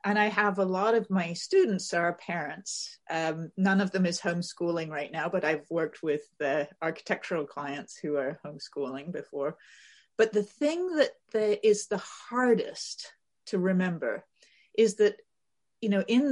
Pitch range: 180-230 Hz